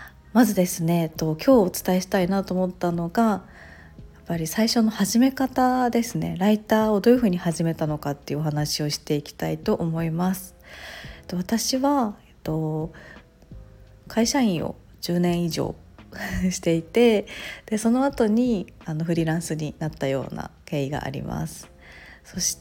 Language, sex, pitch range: Japanese, female, 160-225 Hz